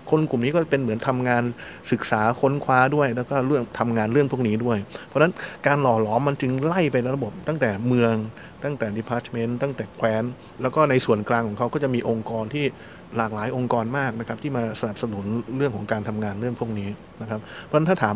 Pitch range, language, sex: 110-135 Hz, Thai, male